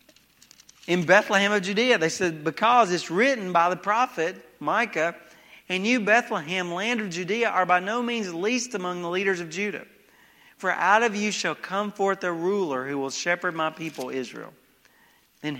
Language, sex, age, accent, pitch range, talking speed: English, male, 40-59, American, 135-200 Hz, 175 wpm